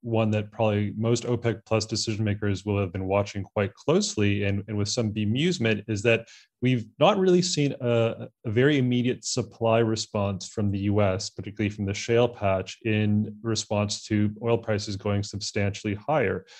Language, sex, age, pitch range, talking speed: English, male, 30-49, 105-115 Hz, 170 wpm